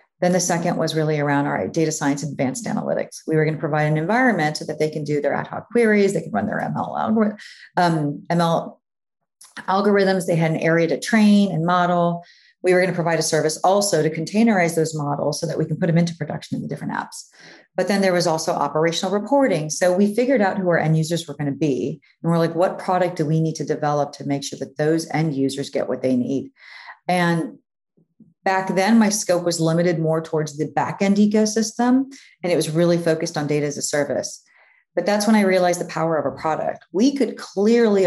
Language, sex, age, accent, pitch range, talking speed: English, female, 40-59, American, 155-200 Hz, 220 wpm